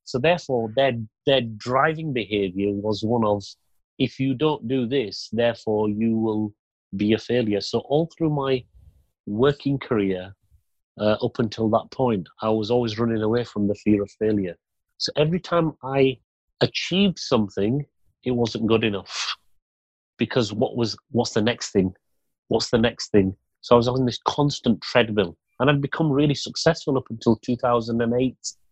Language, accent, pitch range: English, British, 105-125 Hz